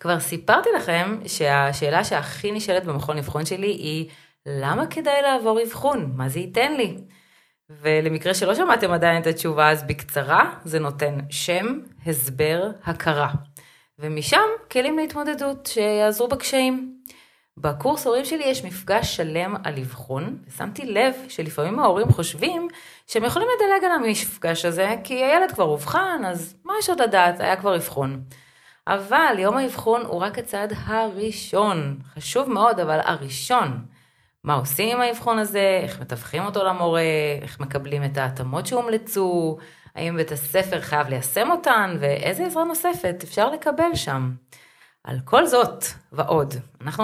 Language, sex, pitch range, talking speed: Hebrew, female, 150-230 Hz, 140 wpm